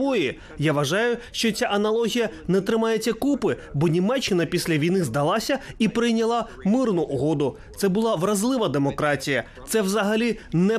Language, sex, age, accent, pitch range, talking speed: Ukrainian, male, 30-49, native, 170-235 Hz, 140 wpm